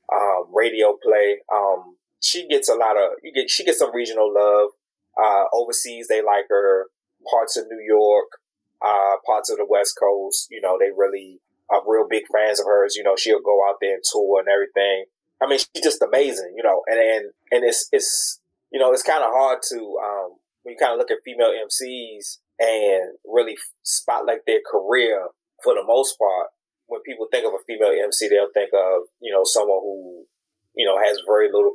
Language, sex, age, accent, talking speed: English, male, 20-39, American, 200 wpm